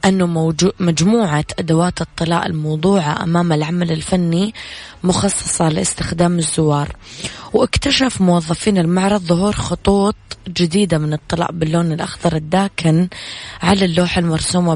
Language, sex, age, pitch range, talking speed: English, female, 20-39, 160-185 Hz, 105 wpm